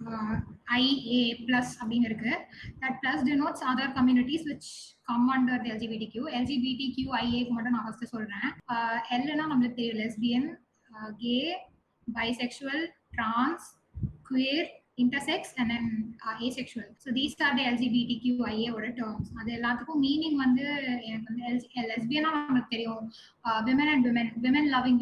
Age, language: 10-29, Tamil